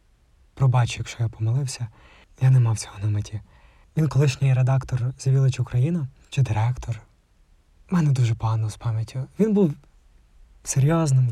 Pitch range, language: 100-135 Hz, English